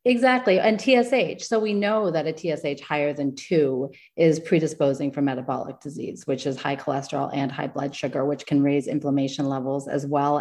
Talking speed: 185 wpm